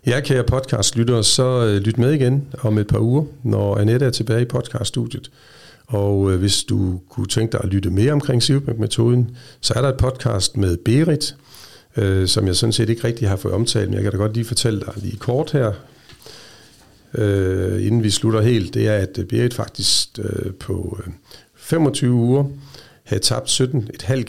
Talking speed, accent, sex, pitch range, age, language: 180 wpm, native, male, 105-130 Hz, 50-69, Danish